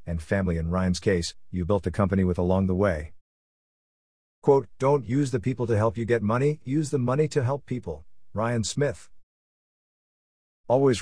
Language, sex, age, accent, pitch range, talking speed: English, male, 50-69, American, 90-125 Hz, 175 wpm